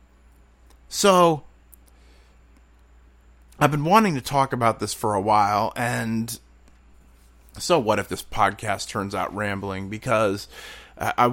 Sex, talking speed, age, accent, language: male, 115 wpm, 30-49, American, English